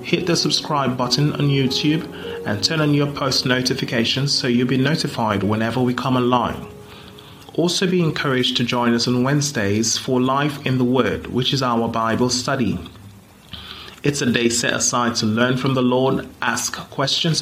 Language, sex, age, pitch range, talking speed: English, male, 30-49, 115-145 Hz, 170 wpm